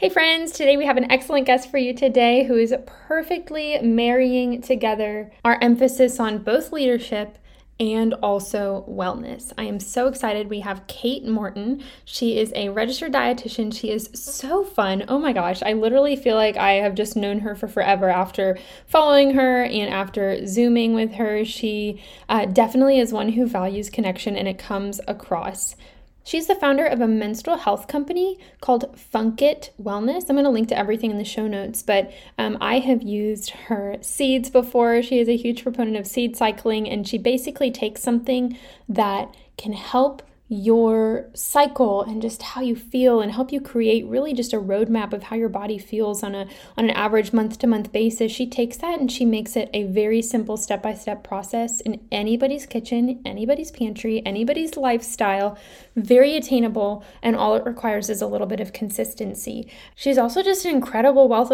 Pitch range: 215-260 Hz